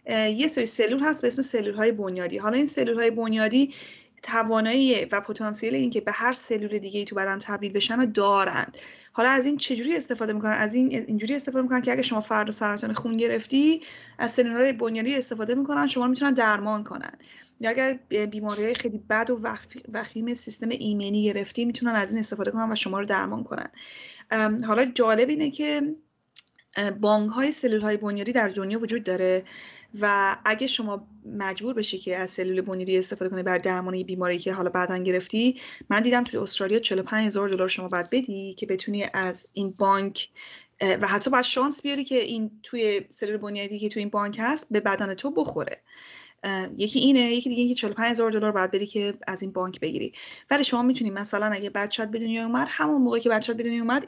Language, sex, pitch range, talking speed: Persian, female, 205-245 Hz, 190 wpm